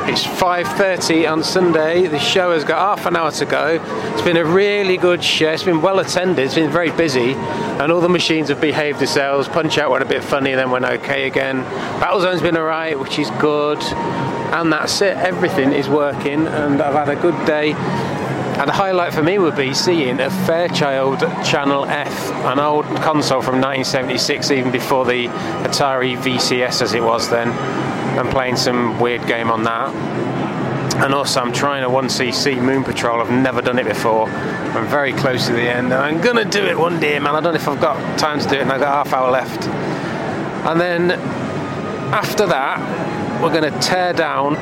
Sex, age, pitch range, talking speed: male, 30-49, 130-165 Hz, 200 wpm